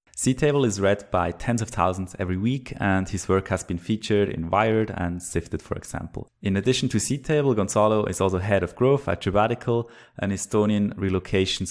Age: 20-39